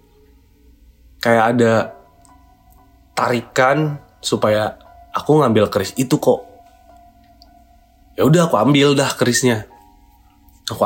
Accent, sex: native, male